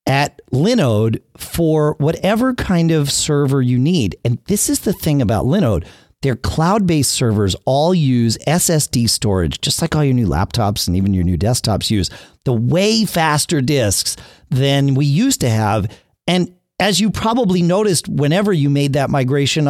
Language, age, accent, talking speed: English, 40-59, American, 170 wpm